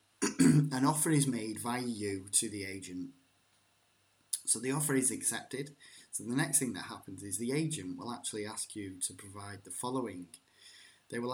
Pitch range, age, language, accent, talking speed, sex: 100-125 Hz, 10-29, English, British, 175 wpm, male